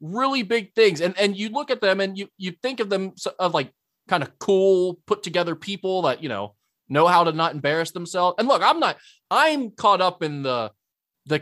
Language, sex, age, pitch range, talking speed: English, male, 20-39, 150-210 Hz, 220 wpm